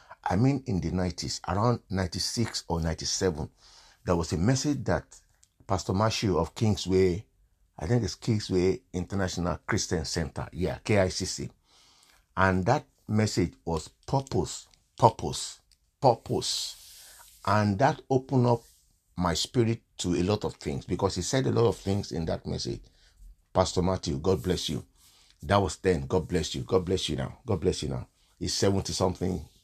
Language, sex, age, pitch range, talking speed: English, male, 50-69, 90-130 Hz, 155 wpm